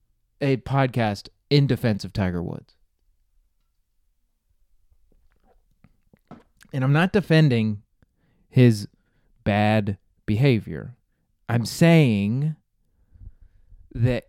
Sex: male